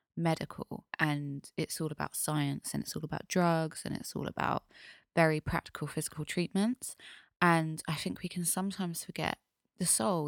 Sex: female